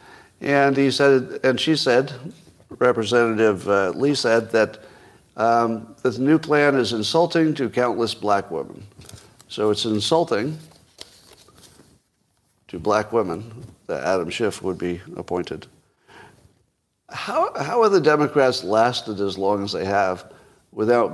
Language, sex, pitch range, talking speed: English, male, 100-130 Hz, 130 wpm